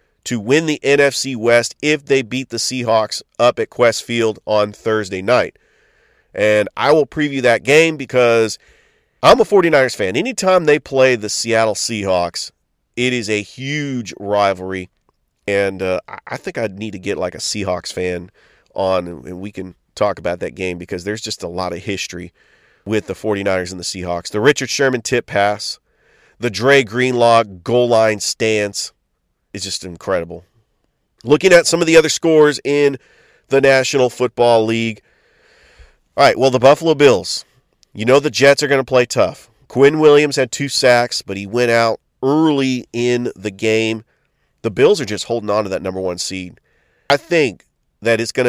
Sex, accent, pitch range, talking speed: male, American, 105-135 Hz, 175 wpm